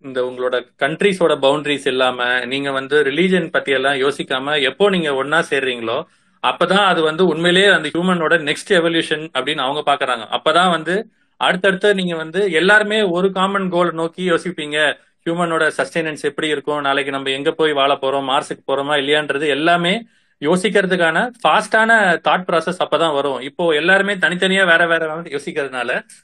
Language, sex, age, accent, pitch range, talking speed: Tamil, male, 30-49, native, 150-185 Hz, 145 wpm